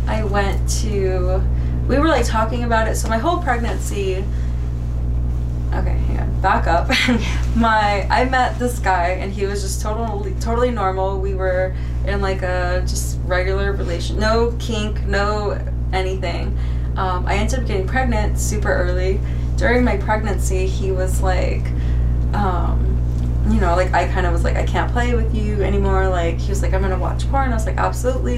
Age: 20-39